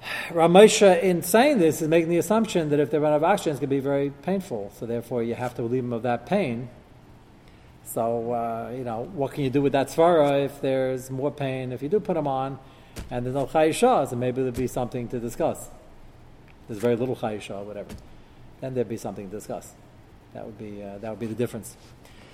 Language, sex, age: English, male, 40-59